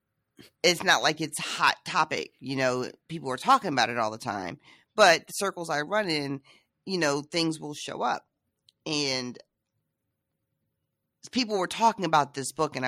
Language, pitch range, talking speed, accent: English, 125-170 Hz, 170 wpm, American